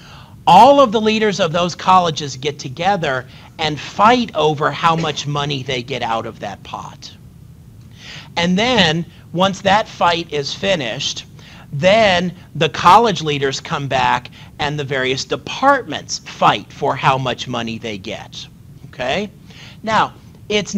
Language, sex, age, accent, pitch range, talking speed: English, male, 40-59, American, 135-180 Hz, 140 wpm